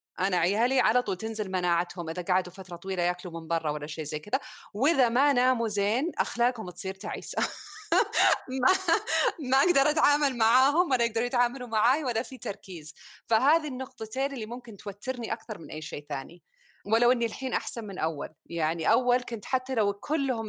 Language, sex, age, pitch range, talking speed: Arabic, female, 30-49, 185-250 Hz, 165 wpm